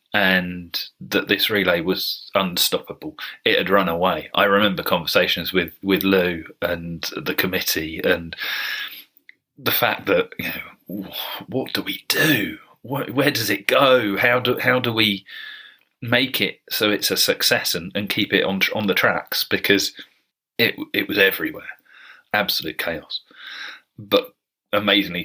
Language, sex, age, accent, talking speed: English, male, 30-49, British, 145 wpm